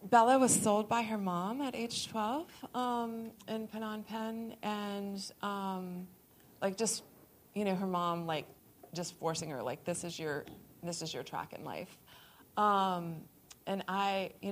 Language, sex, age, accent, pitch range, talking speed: English, female, 30-49, American, 175-215 Hz, 160 wpm